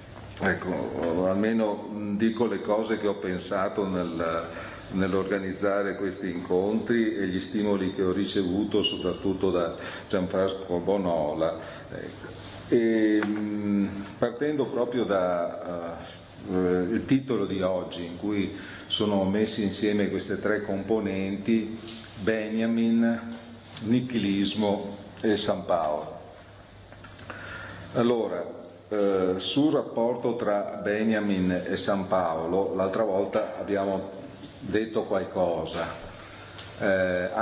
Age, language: 50-69, Italian